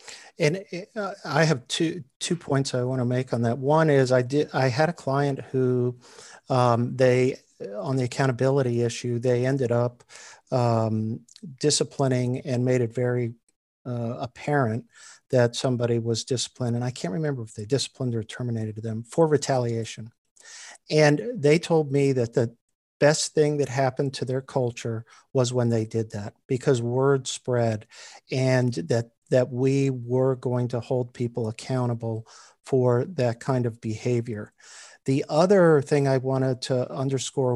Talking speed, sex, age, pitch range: 155 wpm, male, 50-69, 120-145 Hz